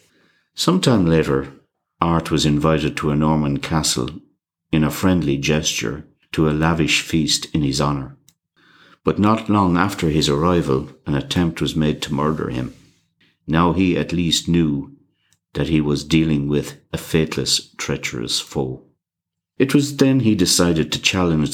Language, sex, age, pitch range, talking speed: English, male, 60-79, 75-90 Hz, 150 wpm